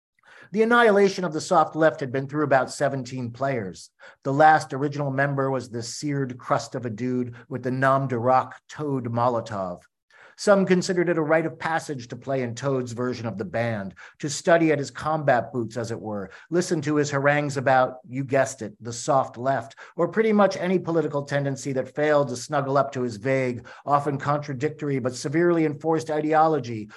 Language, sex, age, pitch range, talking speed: English, male, 50-69, 125-155 Hz, 190 wpm